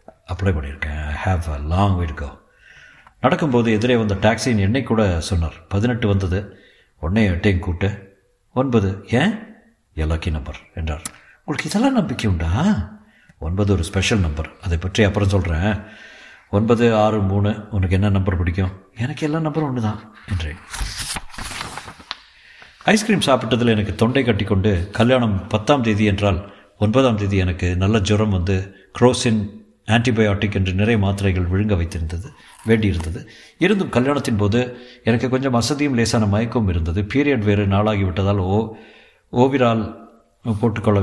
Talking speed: 120 wpm